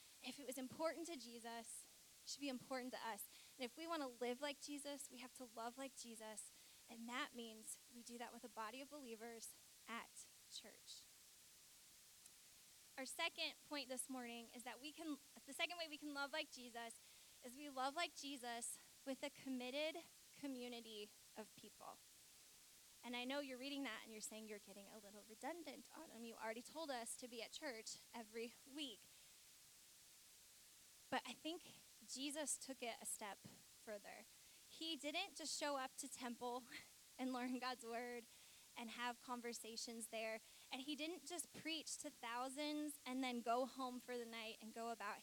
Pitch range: 235-290 Hz